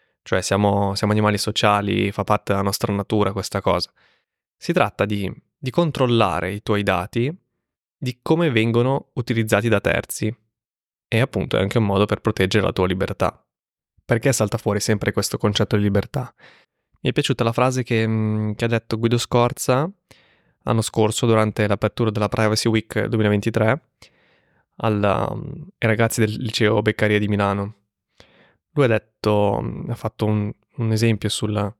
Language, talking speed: Italian, 150 wpm